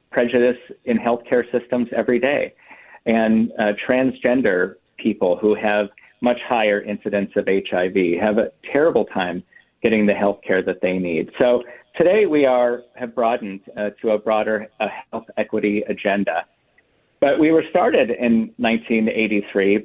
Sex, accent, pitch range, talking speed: male, American, 105-120 Hz, 140 wpm